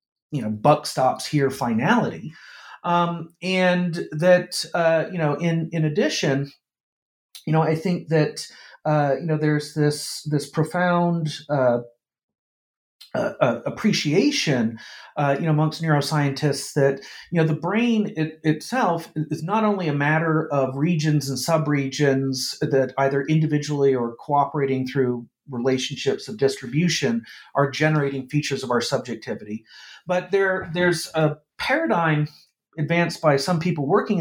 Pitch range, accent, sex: 135-160 Hz, American, male